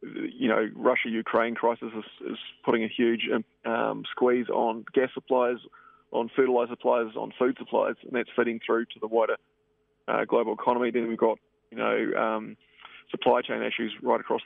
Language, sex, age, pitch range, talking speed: English, male, 20-39, 115-125 Hz, 170 wpm